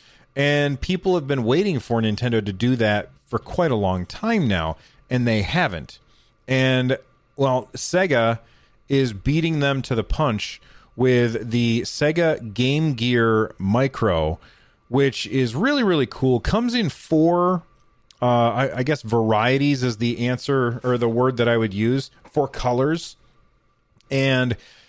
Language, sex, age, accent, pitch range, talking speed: English, male, 30-49, American, 115-140 Hz, 145 wpm